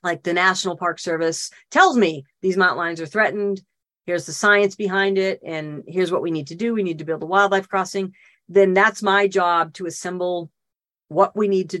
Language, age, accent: English, 40-59, American